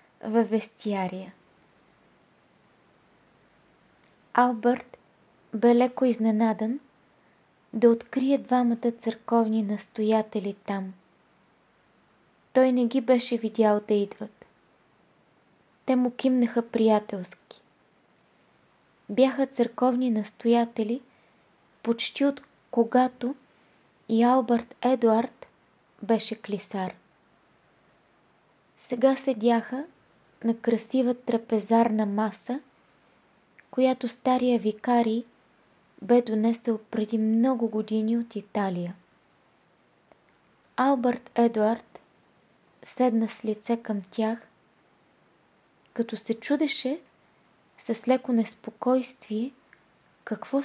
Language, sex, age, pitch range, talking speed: Bulgarian, female, 20-39, 215-250 Hz, 75 wpm